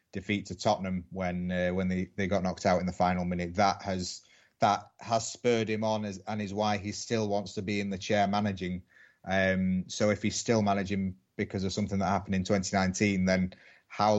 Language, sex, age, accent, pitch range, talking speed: English, male, 30-49, British, 95-105 Hz, 210 wpm